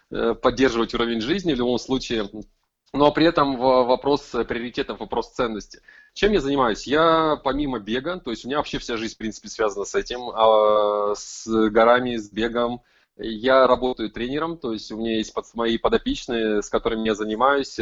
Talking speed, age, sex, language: 165 wpm, 20-39, male, Russian